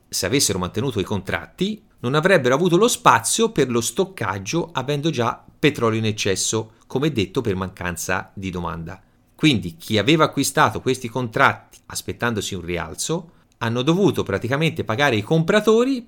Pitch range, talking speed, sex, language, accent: 100-155 Hz, 145 wpm, male, Italian, native